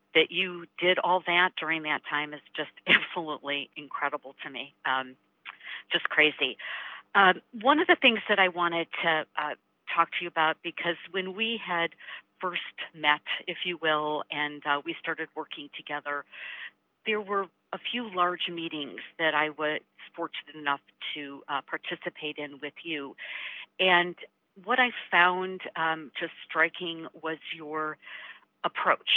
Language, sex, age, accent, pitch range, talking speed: English, female, 50-69, American, 155-190 Hz, 150 wpm